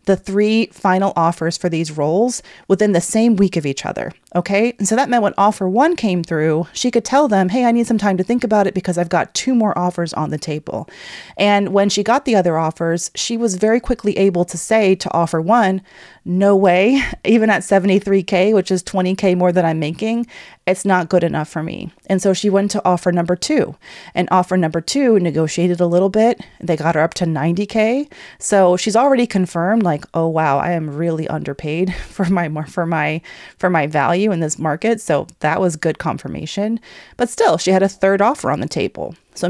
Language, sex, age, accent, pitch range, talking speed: English, female, 30-49, American, 170-205 Hz, 215 wpm